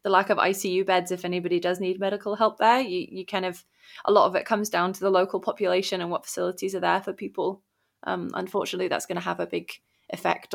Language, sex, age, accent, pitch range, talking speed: English, female, 20-39, British, 175-200 Hz, 240 wpm